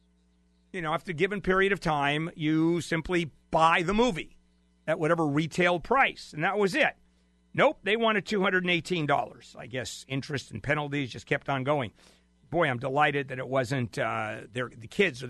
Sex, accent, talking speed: male, American, 175 wpm